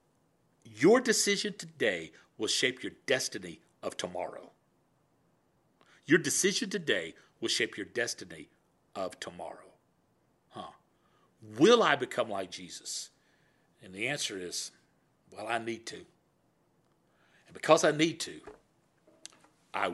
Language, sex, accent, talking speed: English, male, American, 115 wpm